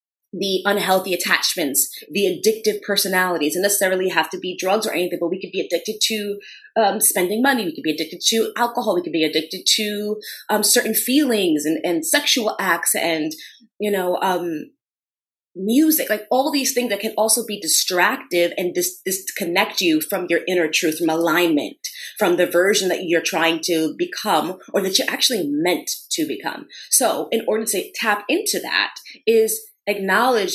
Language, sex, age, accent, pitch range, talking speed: English, female, 30-49, American, 175-225 Hz, 175 wpm